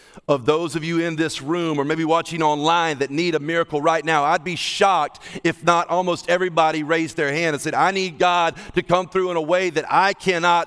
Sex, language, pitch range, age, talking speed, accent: male, English, 145-205 Hz, 40-59, 230 wpm, American